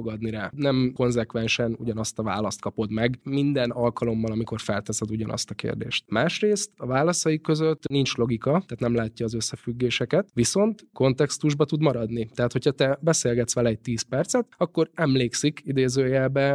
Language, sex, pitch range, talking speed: Hungarian, male, 115-140 Hz, 150 wpm